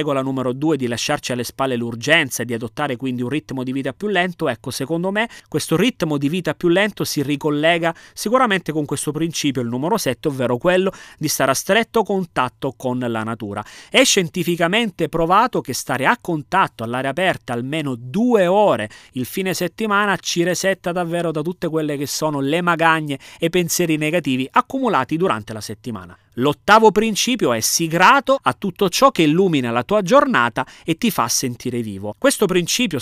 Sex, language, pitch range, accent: male, Italian, 125-185 Hz, native